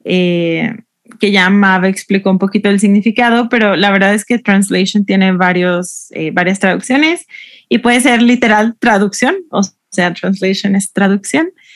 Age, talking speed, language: 20-39, 155 wpm, Spanish